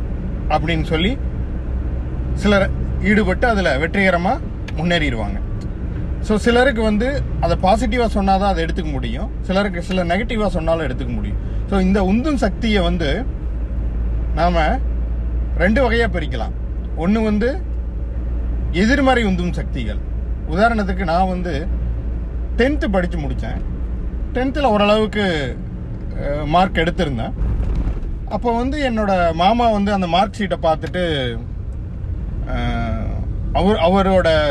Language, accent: Tamil, native